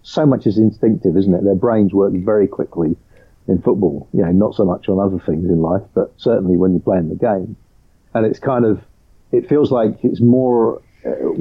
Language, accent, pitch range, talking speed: English, British, 95-120 Hz, 210 wpm